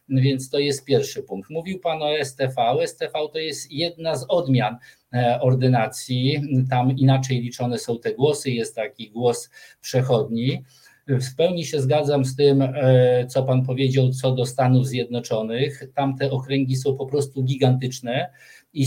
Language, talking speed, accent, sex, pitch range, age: Polish, 150 wpm, native, male, 130-145 Hz, 50-69